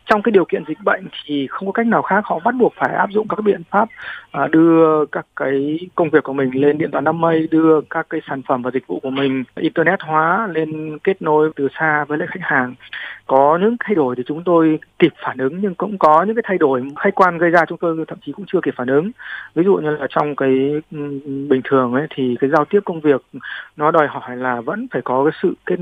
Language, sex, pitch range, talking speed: Vietnamese, male, 140-180 Hz, 255 wpm